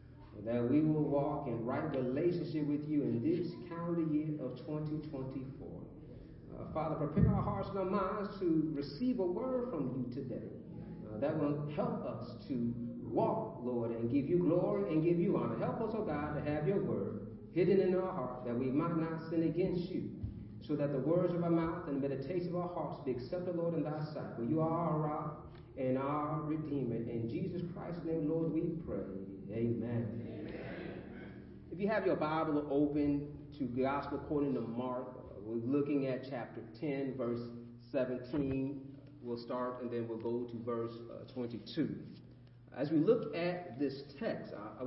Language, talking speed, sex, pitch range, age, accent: English, 185 wpm, male, 125-165 Hz, 40-59, American